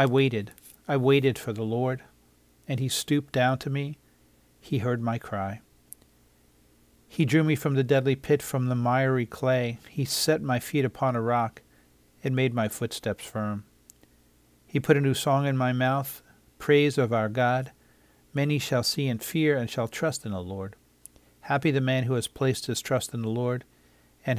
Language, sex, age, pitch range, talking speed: English, male, 50-69, 105-135 Hz, 185 wpm